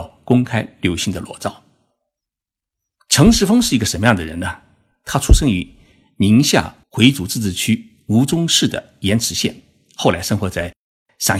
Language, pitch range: Chinese, 95-155 Hz